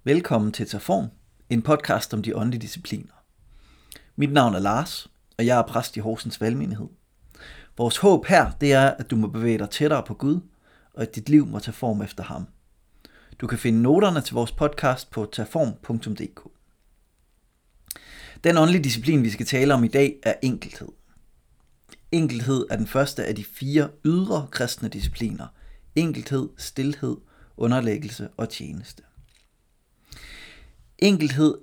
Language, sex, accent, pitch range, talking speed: Danish, male, native, 110-145 Hz, 150 wpm